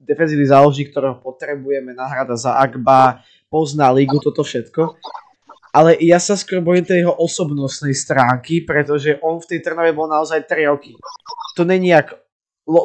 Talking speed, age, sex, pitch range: 145 wpm, 20-39, male, 135-165 Hz